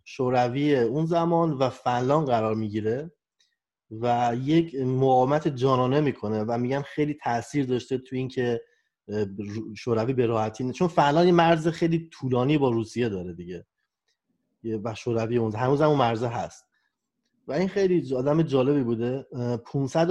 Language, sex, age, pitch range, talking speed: Persian, male, 30-49, 120-165 Hz, 135 wpm